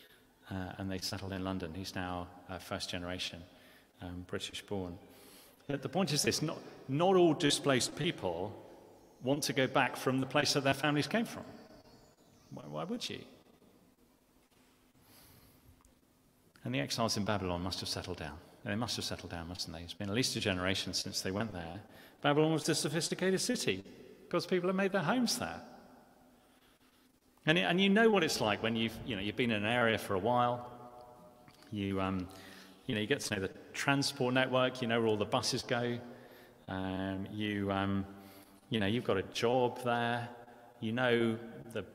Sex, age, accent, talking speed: male, 40-59, British, 180 wpm